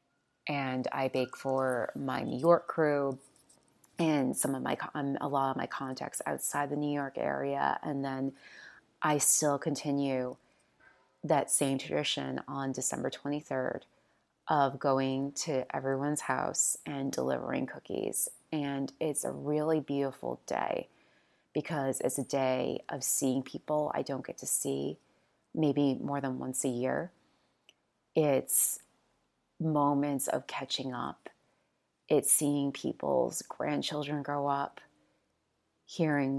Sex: female